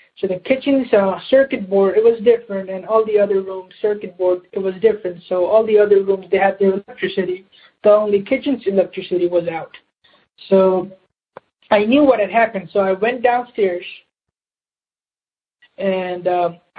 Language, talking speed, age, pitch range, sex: English, 165 wpm, 20-39, 185-220 Hz, male